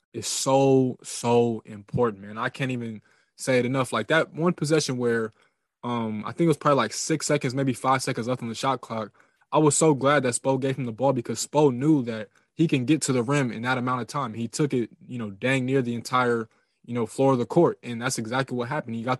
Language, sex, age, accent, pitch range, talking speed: English, male, 20-39, American, 120-145 Hz, 250 wpm